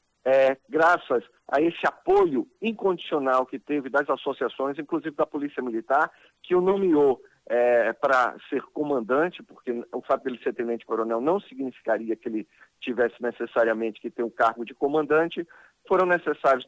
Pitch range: 125-160 Hz